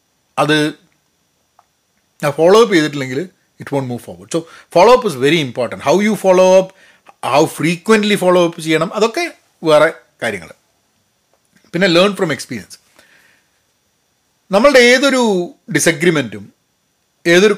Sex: male